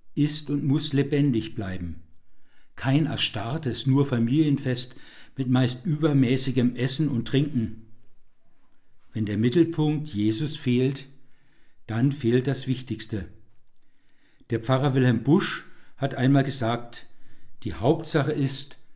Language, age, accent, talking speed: German, 60-79, German, 110 wpm